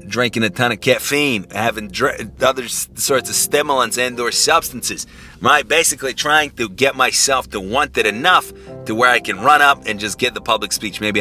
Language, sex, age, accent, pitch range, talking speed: English, male, 30-49, American, 100-130 Hz, 195 wpm